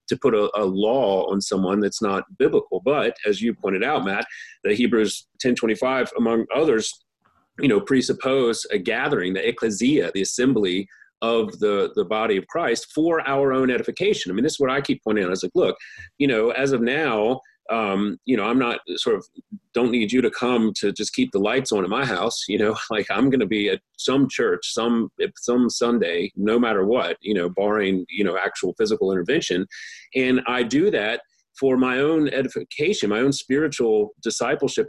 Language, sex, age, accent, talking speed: English, male, 30-49, American, 200 wpm